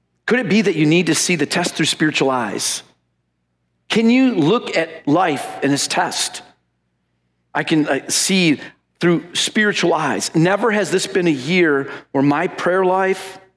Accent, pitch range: American, 120-195 Hz